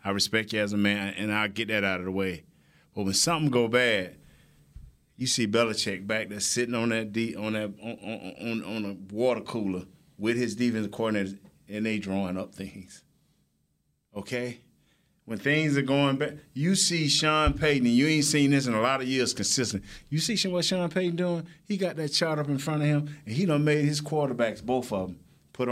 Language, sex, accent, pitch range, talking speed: English, male, American, 110-150 Hz, 210 wpm